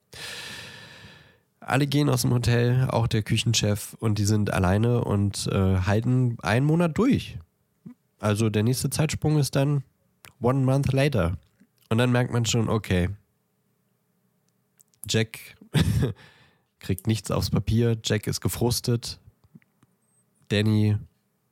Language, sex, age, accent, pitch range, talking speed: German, male, 20-39, German, 95-120 Hz, 115 wpm